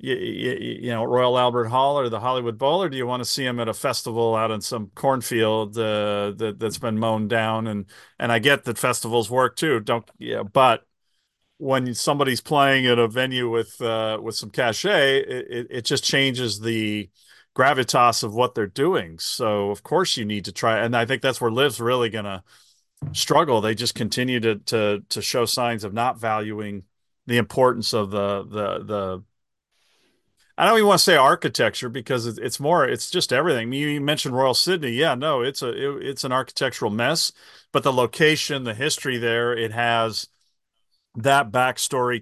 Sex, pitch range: male, 110-130 Hz